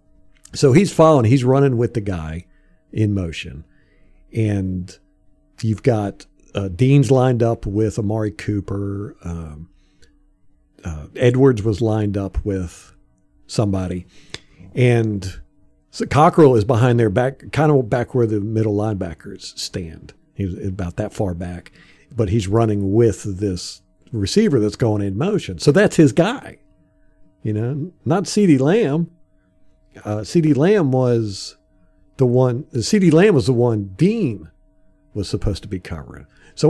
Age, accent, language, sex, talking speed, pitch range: 50-69, American, English, male, 140 wpm, 100-140 Hz